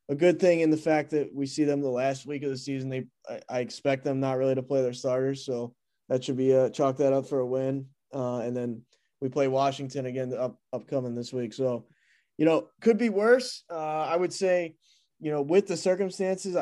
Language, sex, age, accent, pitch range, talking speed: English, male, 20-39, American, 130-150 Hz, 230 wpm